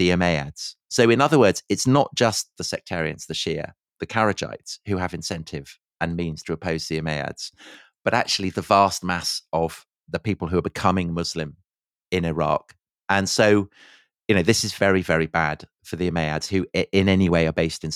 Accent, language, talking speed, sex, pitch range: British, English, 190 wpm, male, 80-95 Hz